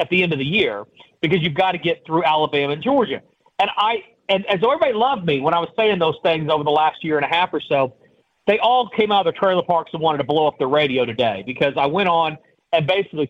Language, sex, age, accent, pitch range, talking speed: English, male, 40-59, American, 155-195 Hz, 270 wpm